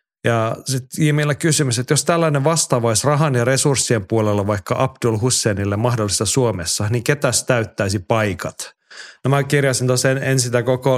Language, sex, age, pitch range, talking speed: Finnish, male, 30-49, 105-135 Hz, 155 wpm